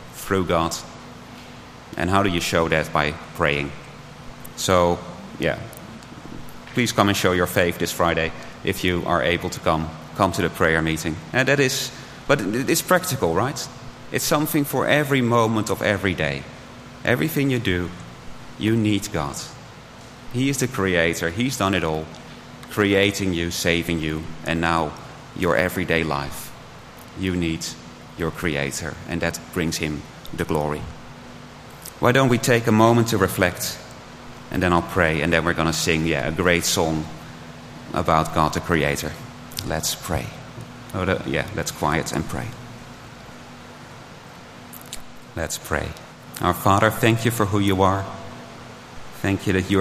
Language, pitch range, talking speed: English, 85-110 Hz, 155 wpm